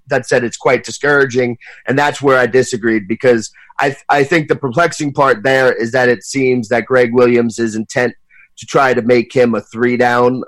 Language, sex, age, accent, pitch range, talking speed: English, male, 30-49, American, 115-125 Hz, 200 wpm